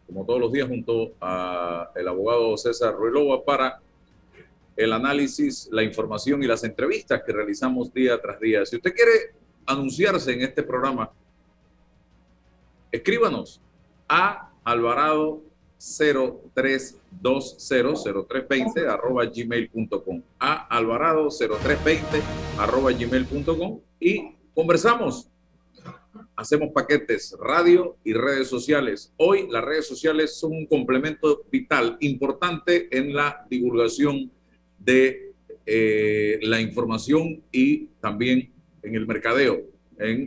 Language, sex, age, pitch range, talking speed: Spanish, male, 50-69, 115-160 Hz, 105 wpm